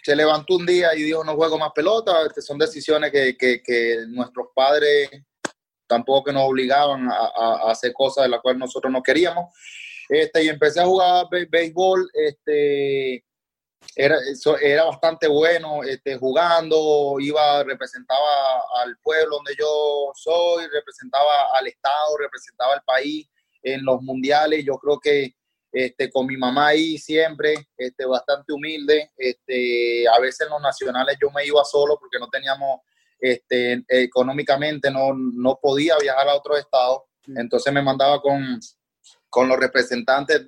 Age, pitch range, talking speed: 20-39, 130-155 Hz, 155 wpm